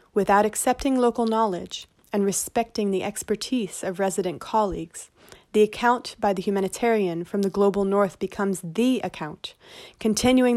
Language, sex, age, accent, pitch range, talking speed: English, female, 30-49, American, 185-220 Hz, 135 wpm